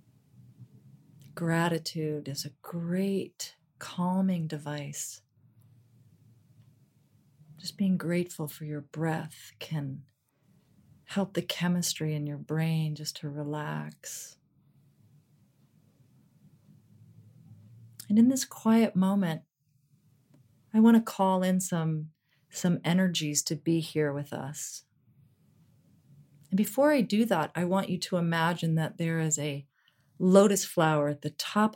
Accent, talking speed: American, 110 wpm